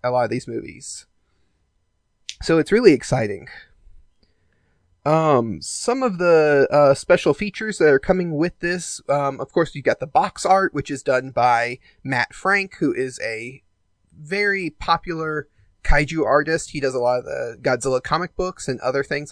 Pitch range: 130-180 Hz